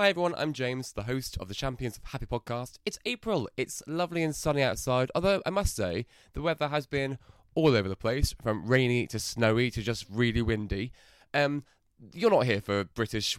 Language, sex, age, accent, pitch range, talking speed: English, male, 20-39, British, 110-145 Hz, 200 wpm